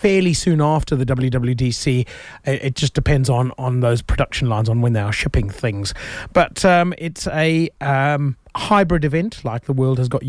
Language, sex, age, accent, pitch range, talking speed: English, male, 30-49, British, 120-155 Hz, 180 wpm